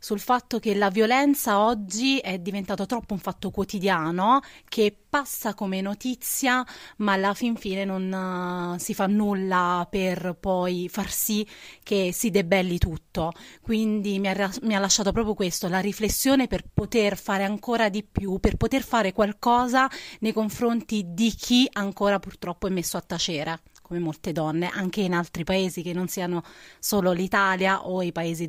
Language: Italian